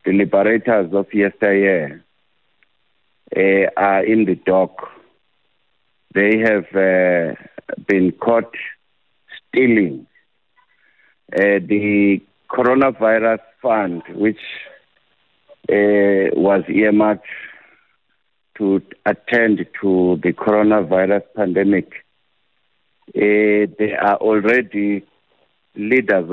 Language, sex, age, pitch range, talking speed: English, male, 60-79, 100-115 Hz, 75 wpm